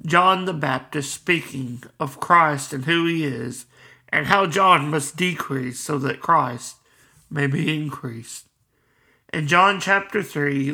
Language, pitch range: English, 130-170 Hz